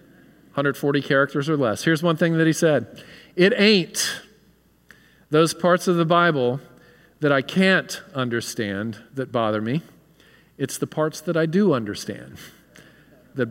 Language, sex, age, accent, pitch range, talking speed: English, male, 40-59, American, 125-165 Hz, 140 wpm